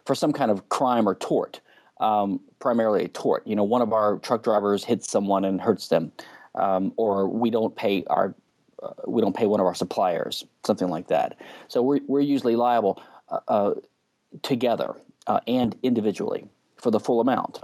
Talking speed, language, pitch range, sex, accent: 190 wpm, English, 110-140 Hz, male, American